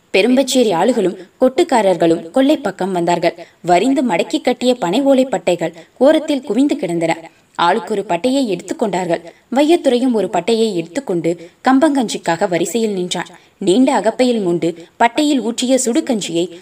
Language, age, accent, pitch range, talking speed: Tamil, 20-39, native, 175-260 Hz, 100 wpm